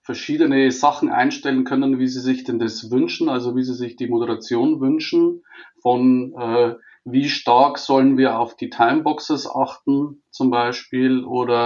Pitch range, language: 125-150 Hz, German